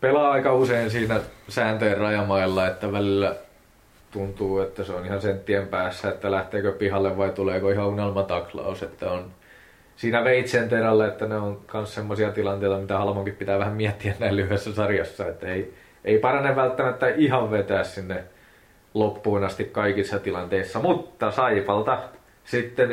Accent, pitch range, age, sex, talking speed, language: native, 100-110 Hz, 20-39, male, 145 wpm, Finnish